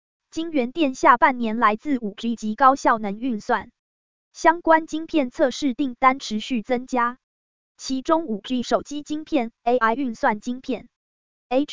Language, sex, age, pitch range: Chinese, female, 20-39, 225-285 Hz